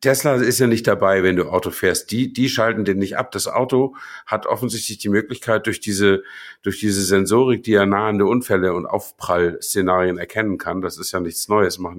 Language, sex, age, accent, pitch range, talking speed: German, male, 50-69, German, 100-120 Hz, 200 wpm